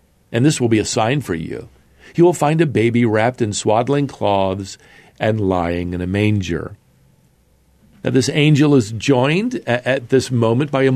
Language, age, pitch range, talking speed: English, 50-69, 95-125 Hz, 175 wpm